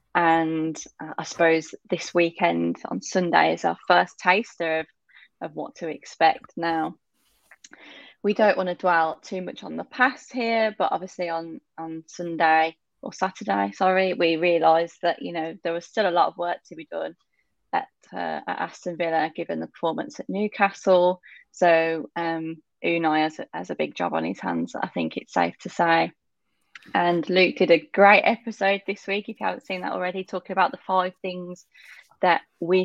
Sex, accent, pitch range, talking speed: female, British, 165-195 Hz, 185 wpm